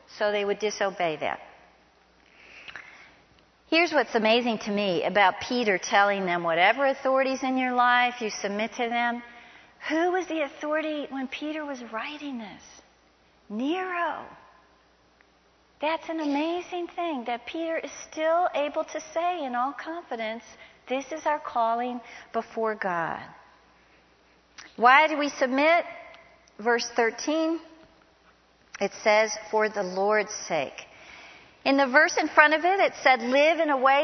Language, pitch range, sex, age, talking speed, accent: English, 225-315 Hz, female, 50-69, 140 wpm, American